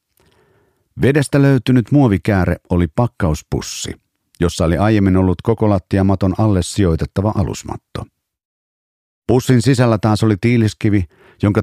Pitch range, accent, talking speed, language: 90-115 Hz, native, 100 wpm, Finnish